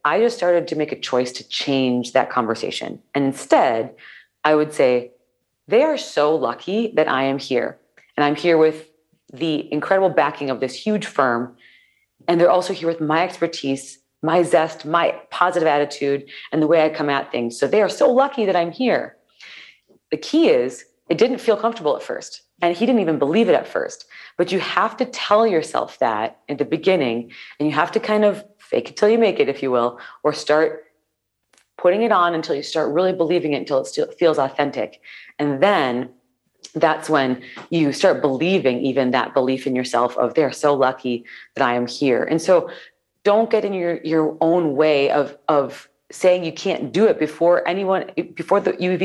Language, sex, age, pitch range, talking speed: English, female, 40-59, 140-190 Hz, 195 wpm